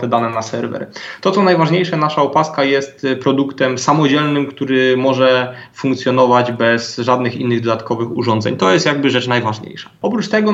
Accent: native